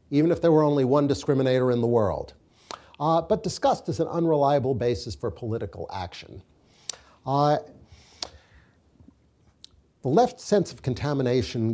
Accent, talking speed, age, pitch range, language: American, 135 wpm, 50-69, 115-155 Hz, English